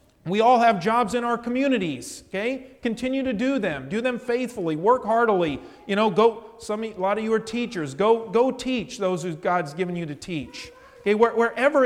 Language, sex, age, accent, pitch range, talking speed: English, male, 40-59, American, 145-205 Hz, 195 wpm